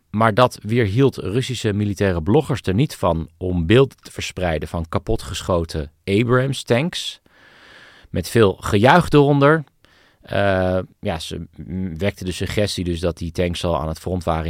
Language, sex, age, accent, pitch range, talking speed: Dutch, male, 40-59, Dutch, 90-125 Hz, 145 wpm